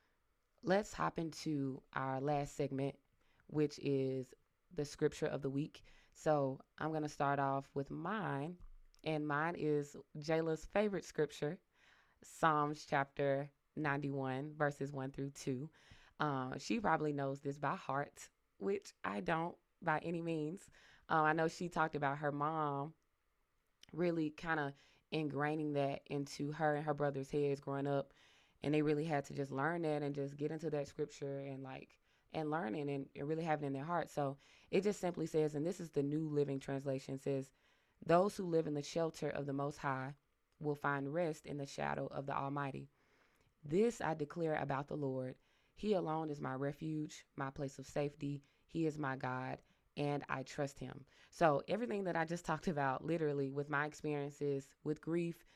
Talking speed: 170 wpm